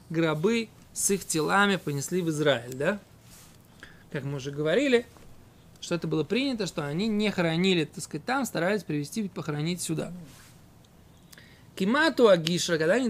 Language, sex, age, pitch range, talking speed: Russian, male, 20-39, 150-200 Hz, 135 wpm